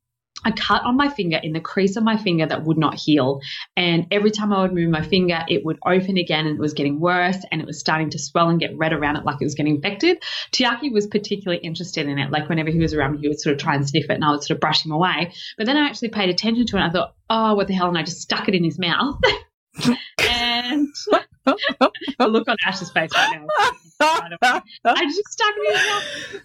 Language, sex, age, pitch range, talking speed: English, female, 20-39, 160-220 Hz, 260 wpm